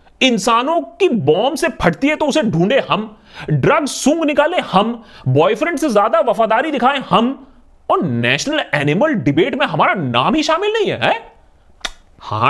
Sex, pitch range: male, 195-285 Hz